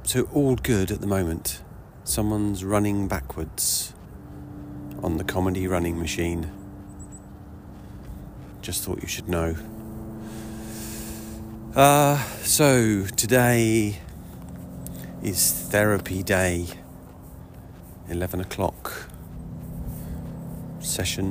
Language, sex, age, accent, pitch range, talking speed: English, male, 40-59, British, 85-110 Hz, 80 wpm